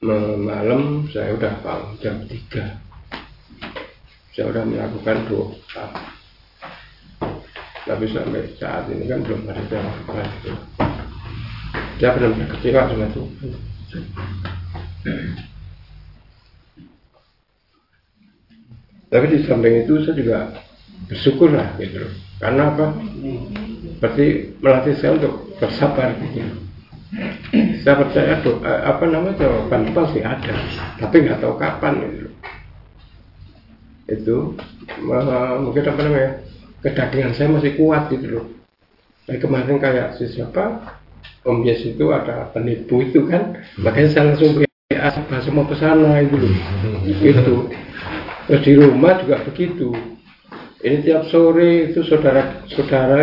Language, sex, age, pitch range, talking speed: Indonesian, male, 60-79, 105-145 Hz, 110 wpm